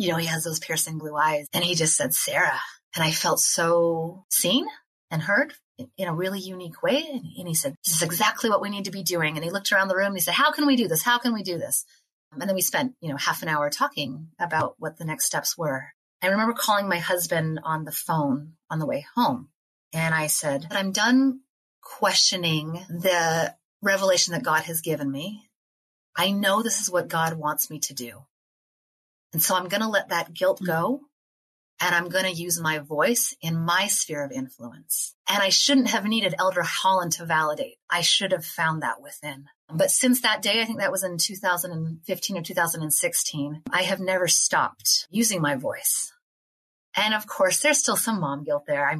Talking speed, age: 210 wpm, 30-49